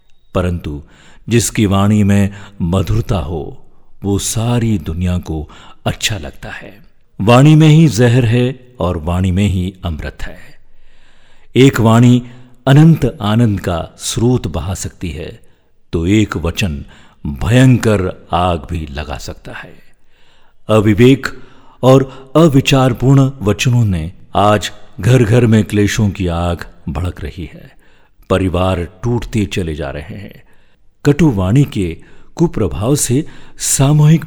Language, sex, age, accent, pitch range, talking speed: Hindi, male, 50-69, native, 90-120 Hz, 120 wpm